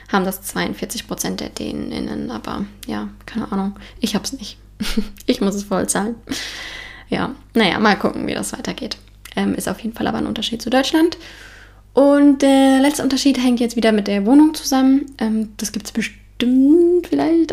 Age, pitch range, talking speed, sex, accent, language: 10-29, 200-245 Hz, 180 wpm, female, German, German